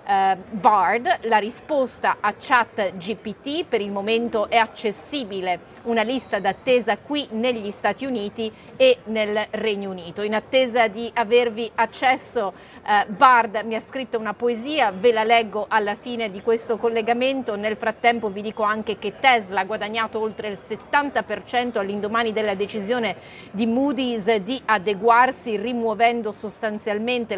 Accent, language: native, Italian